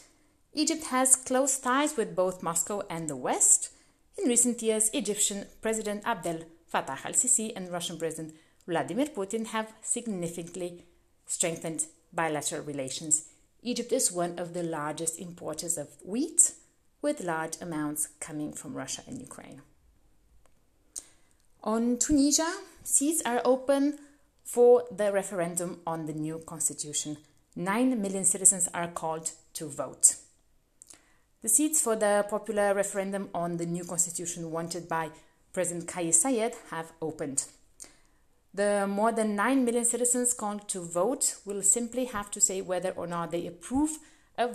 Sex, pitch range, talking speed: female, 165-235 Hz, 135 wpm